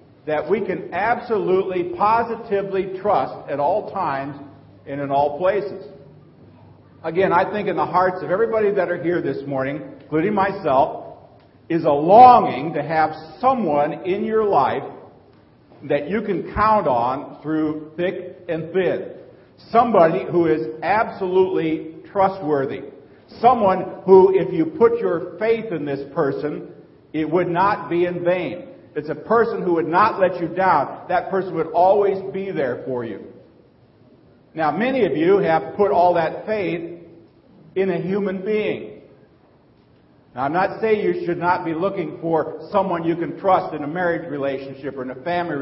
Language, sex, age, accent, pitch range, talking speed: English, male, 50-69, American, 155-195 Hz, 155 wpm